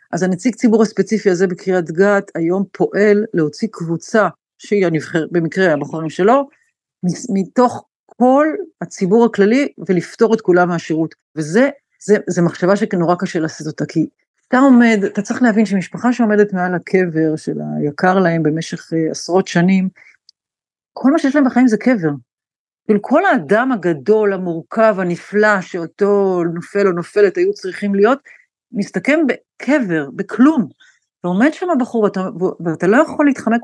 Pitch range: 170-225 Hz